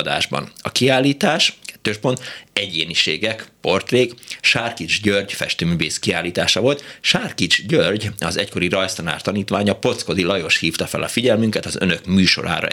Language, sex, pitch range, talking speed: Hungarian, male, 90-115 Hz, 125 wpm